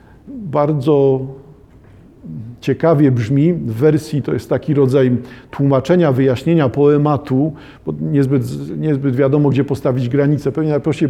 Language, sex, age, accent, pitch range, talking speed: Polish, male, 50-69, native, 130-160 Hz, 120 wpm